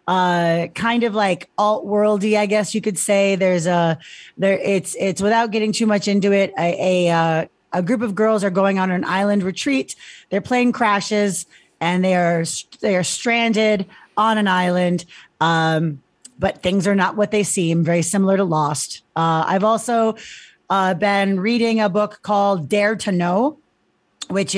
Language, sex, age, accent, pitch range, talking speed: English, female, 40-59, American, 180-220 Hz, 175 wpm